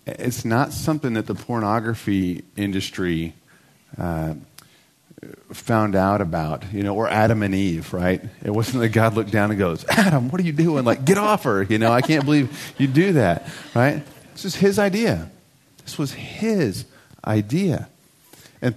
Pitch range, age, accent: 100-140 Hz, 40-59, American